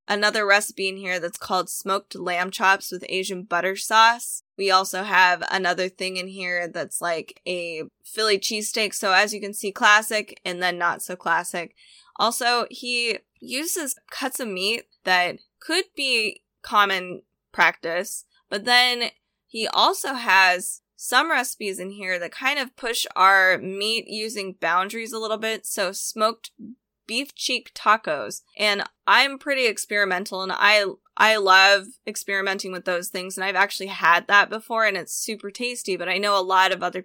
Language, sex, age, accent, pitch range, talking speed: English, female, 10-29, American, 185-230 Hz, 165 wpm